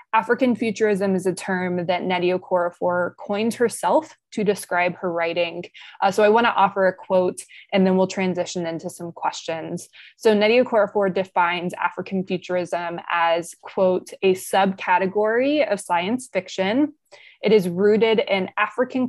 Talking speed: 150 wpm